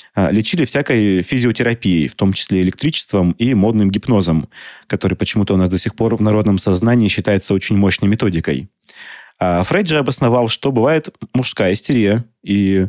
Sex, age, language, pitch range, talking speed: male, 30-49, Russian, 95-120 Hz, 150 wpm